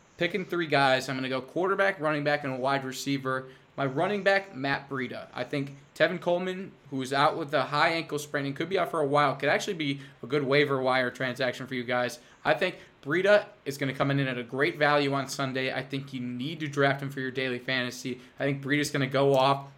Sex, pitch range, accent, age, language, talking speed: male, 130-145 Hz, American, 20-39, English, 245 wpm